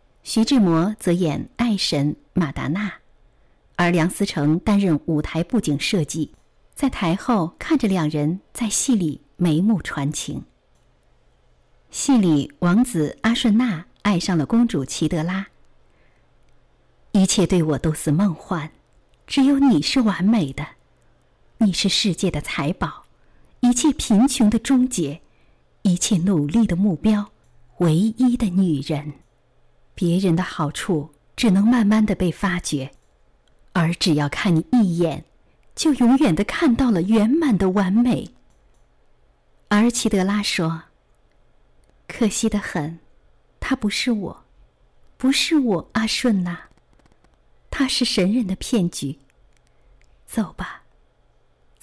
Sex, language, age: female, Chinese, 50-69